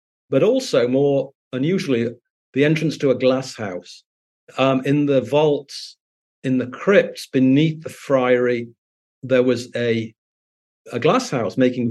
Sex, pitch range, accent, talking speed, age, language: male, 115-140 Hz, British, 135 wpm, 40-59, English